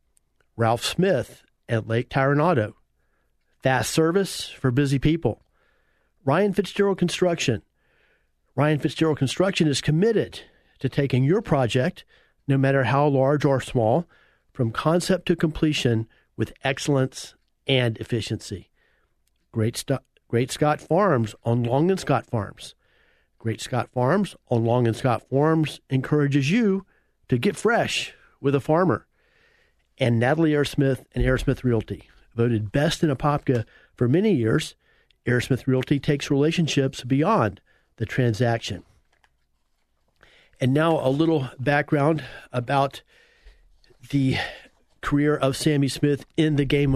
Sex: male